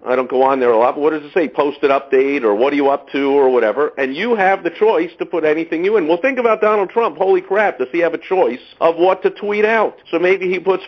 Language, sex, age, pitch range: English, male, 50-69, 155-225 Hz